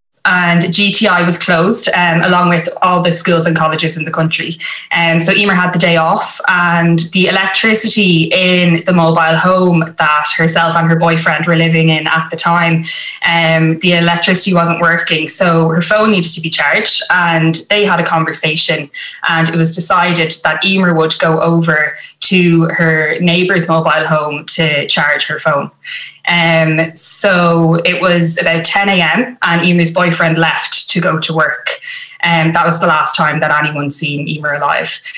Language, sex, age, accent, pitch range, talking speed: English, female, 20-39, Irish, 160-180 Hz, 175 wpm